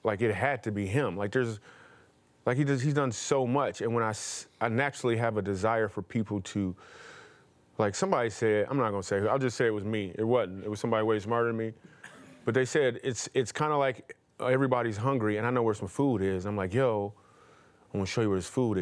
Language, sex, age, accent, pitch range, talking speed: English, male, 30-49, American, 105-135 Hz, 240 wpm